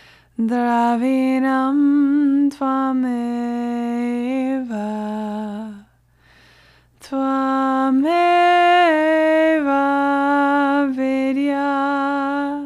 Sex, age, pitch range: female, 20-39, 240-285 Hz